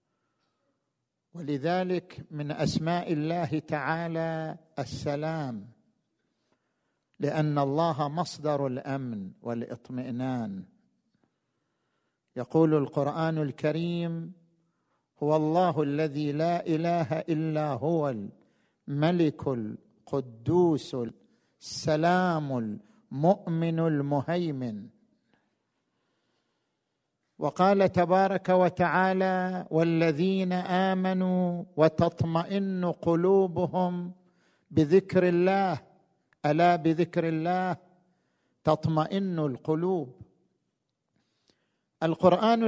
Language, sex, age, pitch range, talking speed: Arabic, male, 50-69, 150-185 Hz, 60 wpm